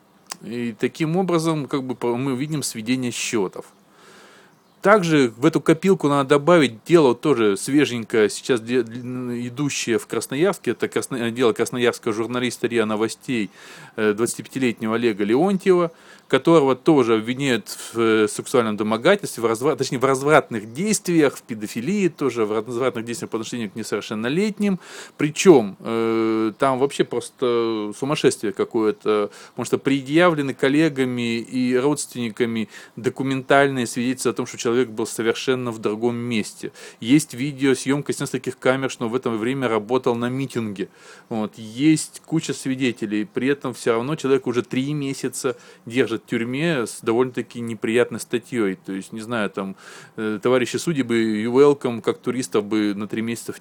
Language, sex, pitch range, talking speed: Russian, male, 115-140 Hz, 140 wpm